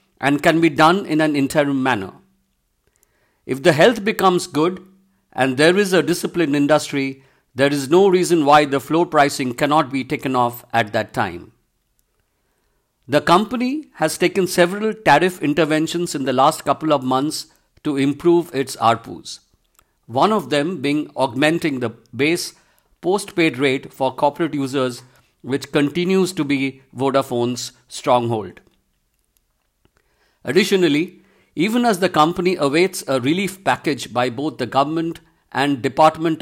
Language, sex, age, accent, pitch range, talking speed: English, male, 50-69, Indian, 135-170 Hz, 140 wpm